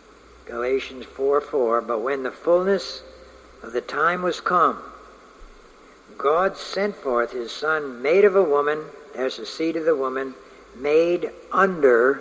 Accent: American